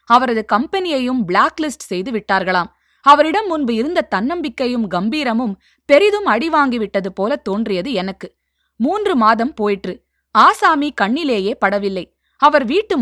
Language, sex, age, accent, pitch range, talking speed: Tamil, female, 20-39, native, 205-280 Hz, 105 wpm